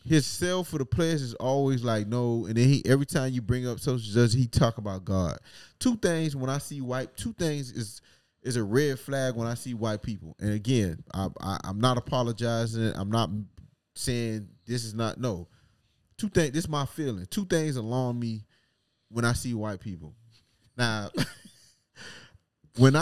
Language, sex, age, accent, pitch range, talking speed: English, male, 20-39, American, 110-135 Hz, 190 wpm